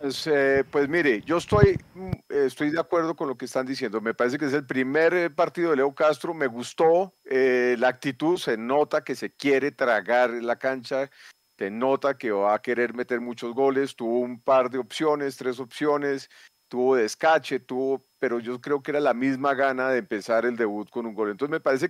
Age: 40-59